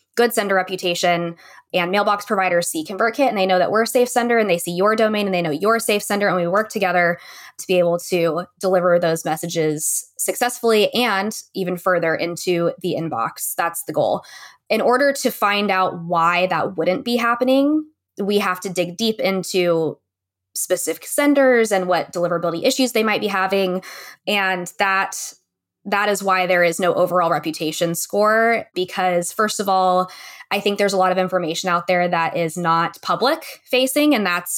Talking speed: 185 wpm